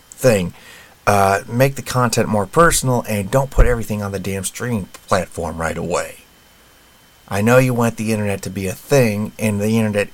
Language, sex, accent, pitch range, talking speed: English, male, American, 90-120 Hz, 185 wpm